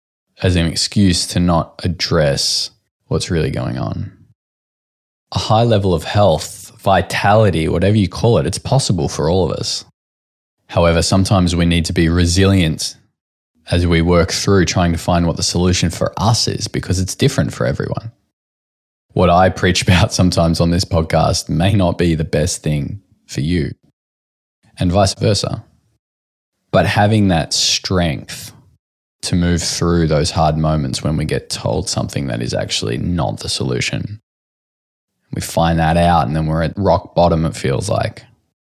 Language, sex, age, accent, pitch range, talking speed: English, male, 20-39, Australian, 80-105 Hz, 160 wpm